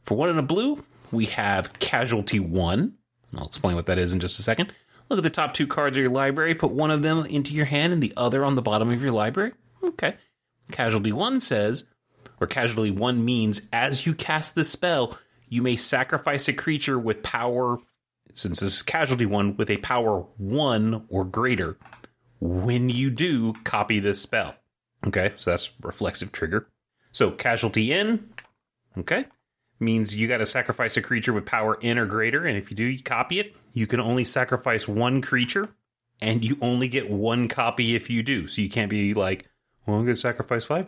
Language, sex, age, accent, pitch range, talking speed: English, male, 30-49, American, 105-135 Hz, 195 wpm